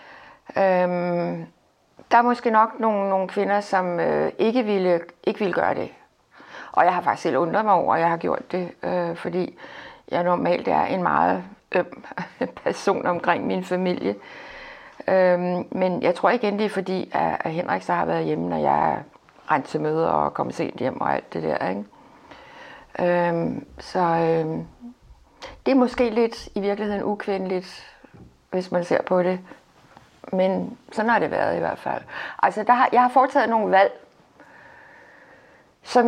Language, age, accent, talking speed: Danish, 60-79, native, 175 wpm